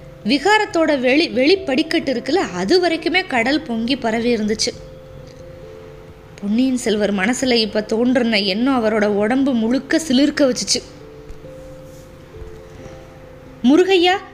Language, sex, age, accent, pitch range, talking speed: Tamil, female, 20-39, native, 225-310 Hz, 95 wpm